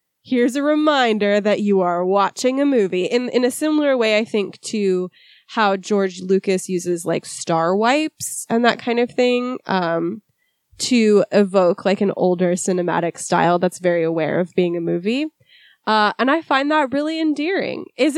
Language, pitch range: English, 190-260 Hz